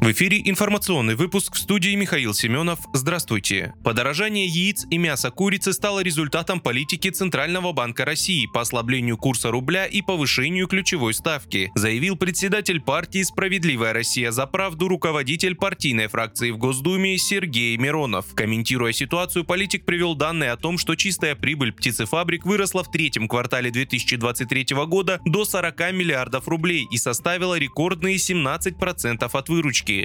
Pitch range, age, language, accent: 125-185 Hz, 20-39, Russian, native